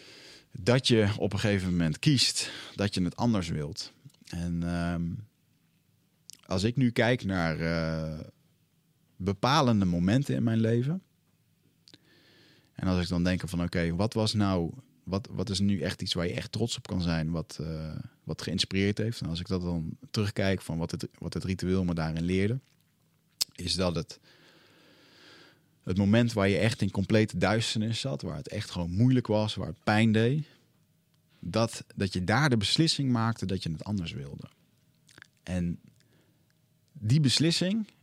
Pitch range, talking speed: 90-120 Hz, 165 wpm